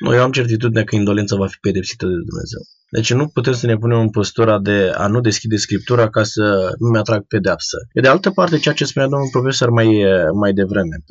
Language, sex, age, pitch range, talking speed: Romanian, male, 20-39, 115-150 Hz, 215 wpm